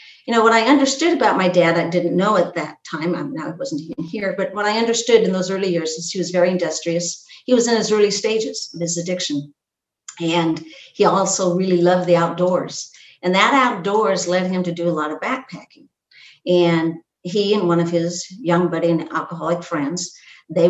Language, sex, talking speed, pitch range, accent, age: English, female, 205 wpm, 165-195 Hz, American, 60-79